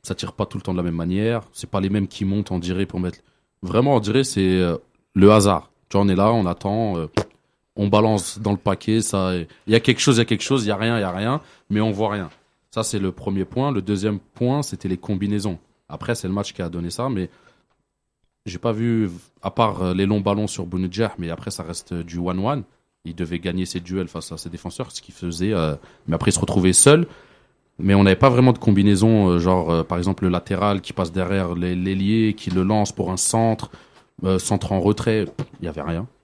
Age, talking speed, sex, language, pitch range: 30-49, 250 wpm, male, French, 90-110 Hz